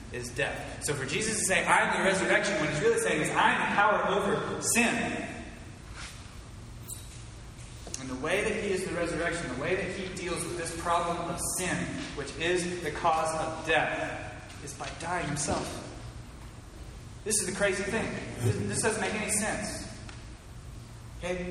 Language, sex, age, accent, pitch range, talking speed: English, male, 30-49, American, 120-185 Hz, 170 wpm